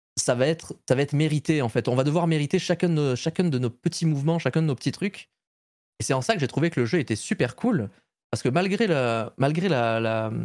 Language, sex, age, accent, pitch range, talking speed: French, male, 20-39, French, 115-165 Hz, 260 wpm